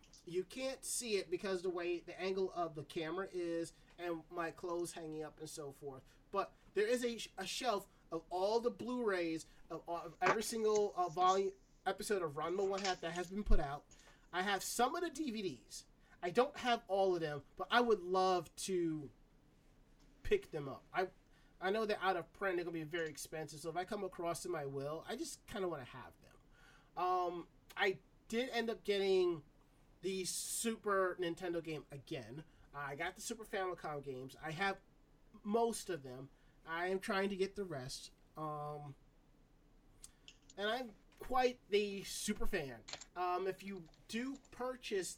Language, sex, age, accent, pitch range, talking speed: English, male, 30-49, American, 160-205 Hz, 180 wpm